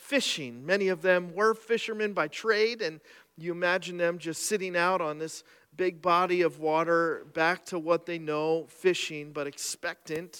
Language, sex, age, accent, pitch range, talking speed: English, male, 40-59, American, 135-180 Hz, 165 wpm